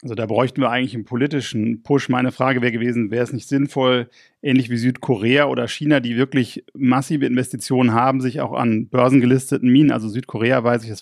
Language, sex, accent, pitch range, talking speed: German, male, German, 120-140 Hz, 195 wpm